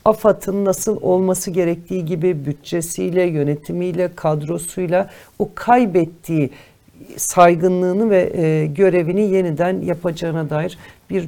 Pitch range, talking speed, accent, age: 165-225 Hz, 90 wpm, native, 60-79